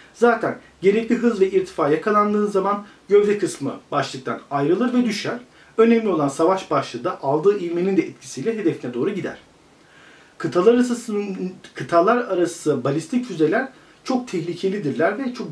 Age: 40-59